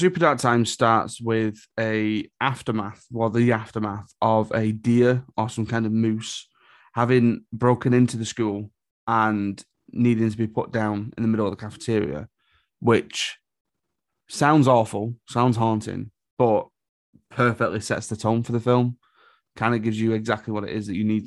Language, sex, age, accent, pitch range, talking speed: English, male, 20-39, British, 110-125 Hz, 165 wpm